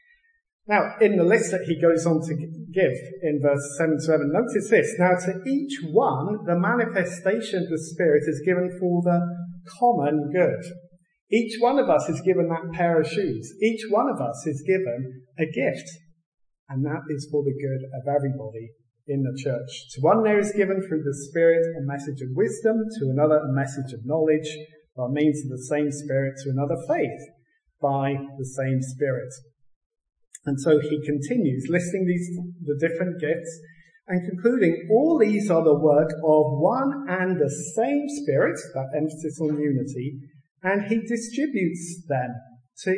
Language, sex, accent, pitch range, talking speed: English, male, British, 145-190 Hz, 170 wpm